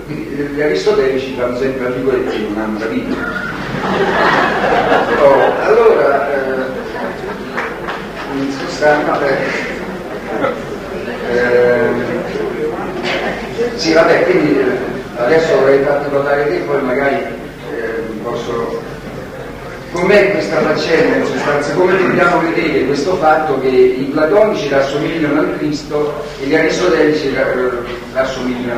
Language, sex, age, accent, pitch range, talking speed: Italian, male, 40-59, native, 125-165 Hz, 100 wpm